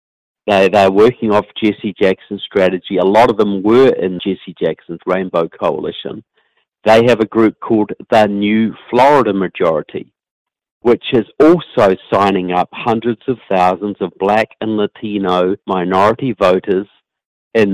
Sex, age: male, 50-69